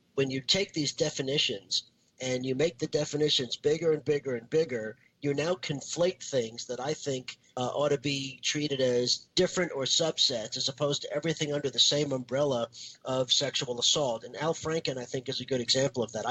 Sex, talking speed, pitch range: male, 195 wpm, 125-150 Hz